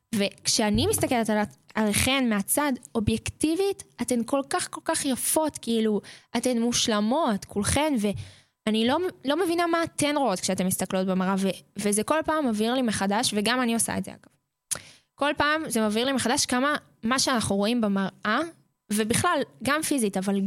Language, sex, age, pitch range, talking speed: Hebrew, female, 10-29, 210-290 Hz, 160 wpm